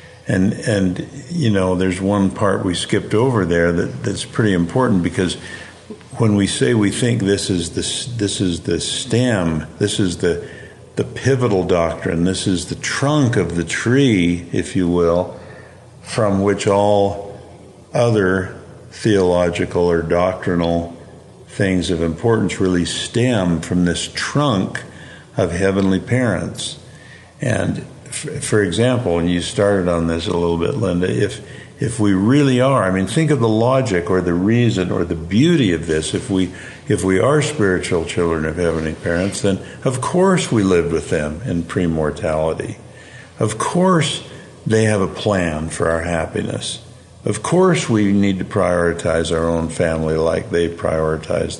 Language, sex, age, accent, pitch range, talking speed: English, male, 50-69, American, 85-115 Hz, 155 wpm